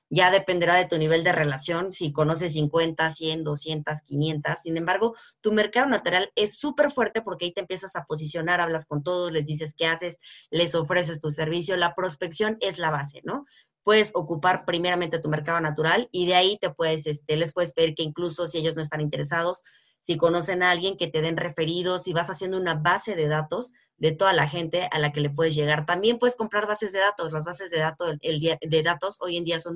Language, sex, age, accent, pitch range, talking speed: Spanish, female, 20-39, Mexican, 160-190 Hz, 215 wpm